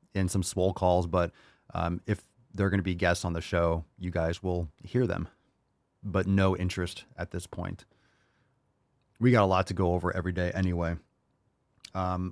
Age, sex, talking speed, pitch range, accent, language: 30-49, male, 180 wpm, 90-110 Hz, American, English